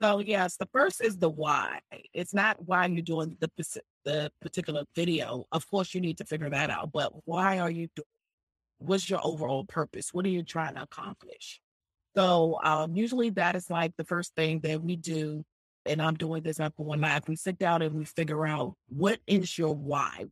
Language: English